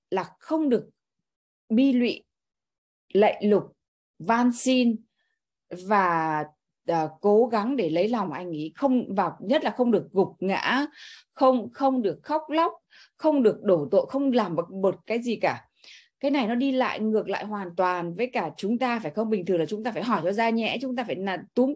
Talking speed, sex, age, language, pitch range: 195 wpm, female, 20-39, Vietnamese, 175-245 Hz